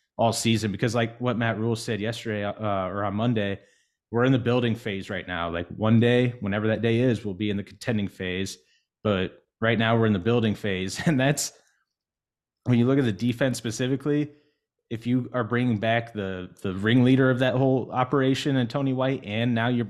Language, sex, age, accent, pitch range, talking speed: English, male, 20-39, American, 100-120 Hz, 205 wpm